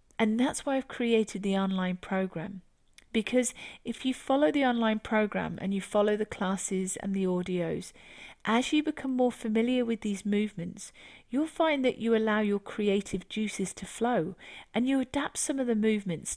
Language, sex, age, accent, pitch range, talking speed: English, female, 40-59, British, 195-255 Hz, 175 wpm